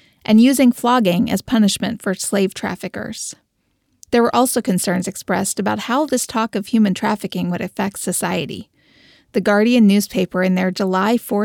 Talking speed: 155 wpm